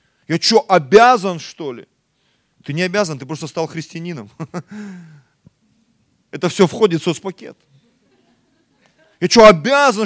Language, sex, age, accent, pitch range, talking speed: Russian, male, 30-49, native, 130-195 Hz, 120 wpm